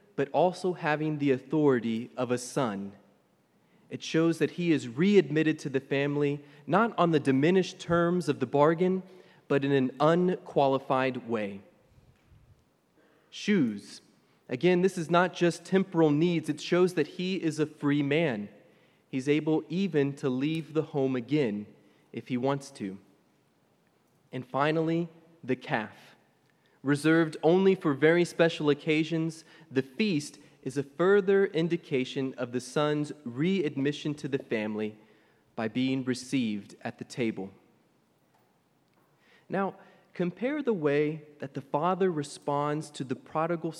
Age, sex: 30-49, male